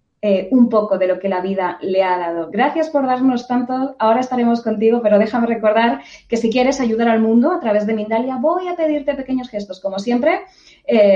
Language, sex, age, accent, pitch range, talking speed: Spanish, female, 20-39, Spanish, 200-255 Hz, 205 wpm